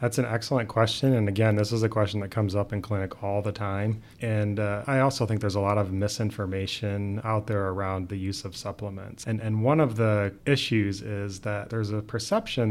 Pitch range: 100-115 Hz